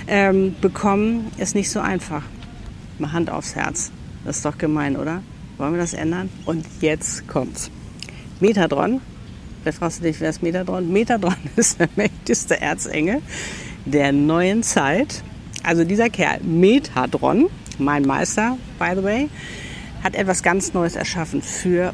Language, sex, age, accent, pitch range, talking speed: German, female, 50-69, German, 150-185 Hz, 145 wpm